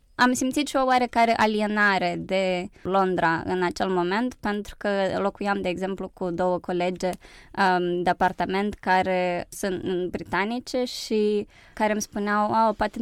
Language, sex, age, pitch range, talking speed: Romanian, female, 20-39, 180-215 Hz, 145 wpm